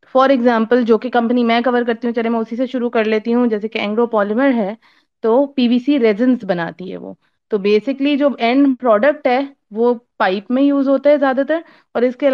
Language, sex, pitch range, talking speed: Urdu, female, 210-255 Hz, 230 wpm